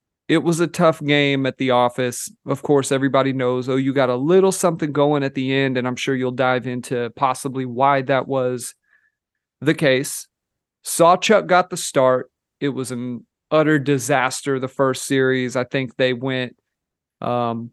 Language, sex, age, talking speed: English, male, 40-59, 175 wpm